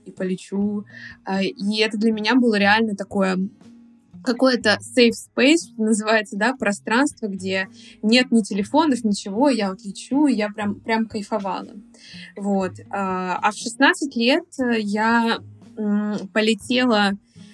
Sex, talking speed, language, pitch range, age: female, 115 wpm, Russian, 200-240 Hz, 20-39